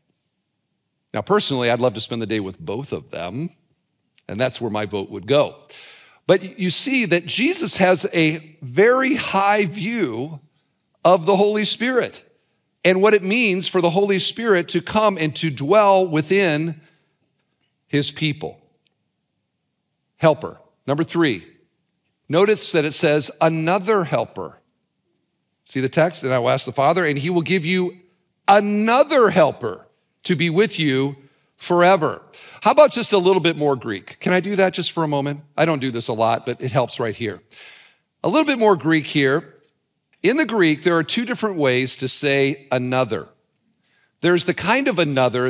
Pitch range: 140-190 Hz